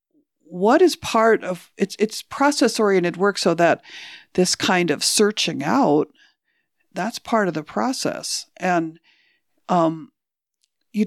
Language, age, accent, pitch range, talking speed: English, 50-69, American, 170-230 Hz, 130 wpm